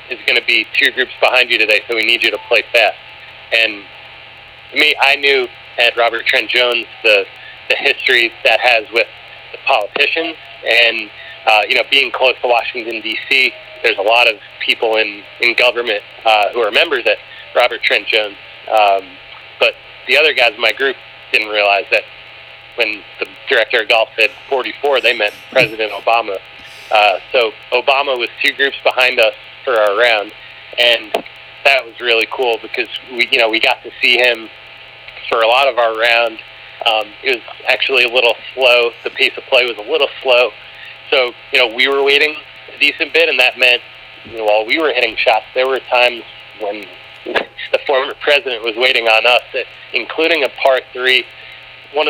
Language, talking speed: English, 185 wpm